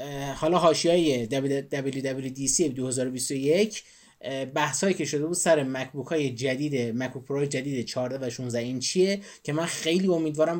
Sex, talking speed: male, 130 wpm